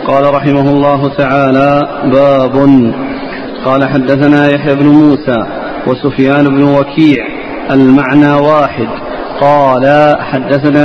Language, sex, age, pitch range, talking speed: Arabic, male, 40-59, 145-155 Hz, 95 wpm